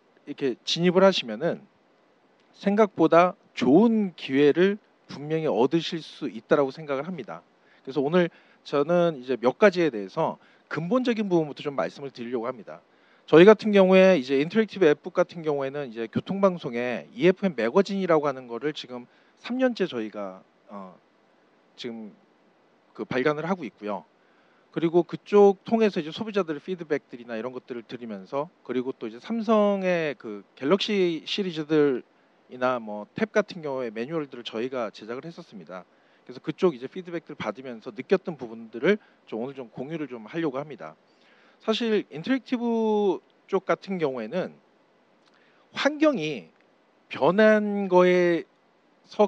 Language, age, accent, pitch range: Korean, 40-59, native, 130-200 Hz